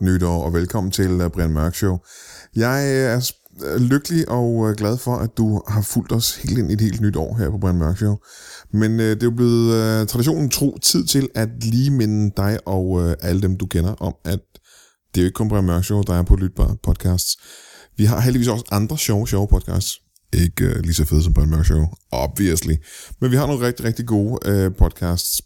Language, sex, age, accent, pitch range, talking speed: Danish, male, 20-39, native, 90-120 Hz, 225 wpm